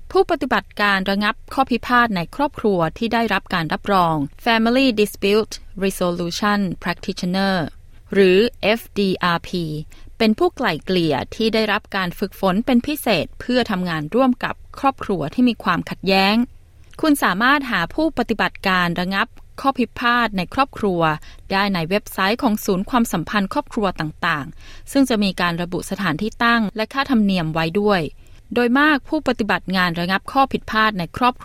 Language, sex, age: Thai, female, 20-39